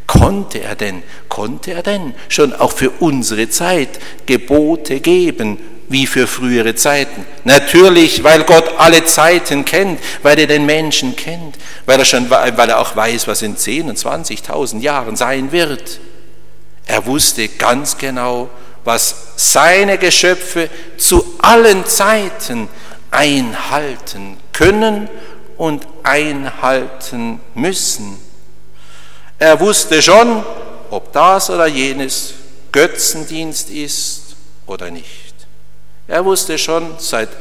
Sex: male